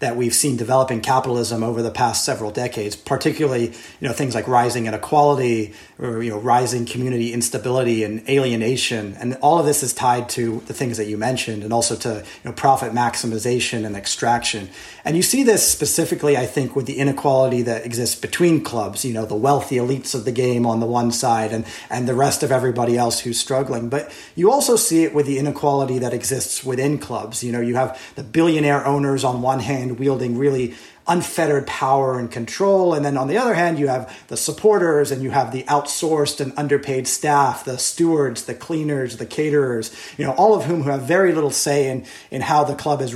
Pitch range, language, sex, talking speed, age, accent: 120-145 Hz, English, male, 205 wpm, 30-49, American